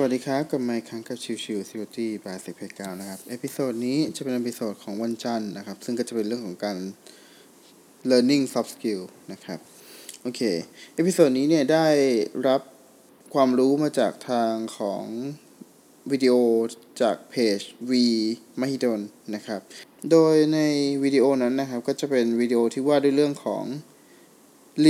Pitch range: 115-140 Hz